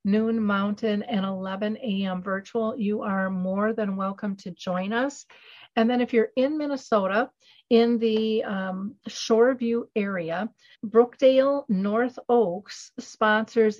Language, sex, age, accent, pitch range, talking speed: English, female, 50-69, American, 195-235 Hz, 125 wpm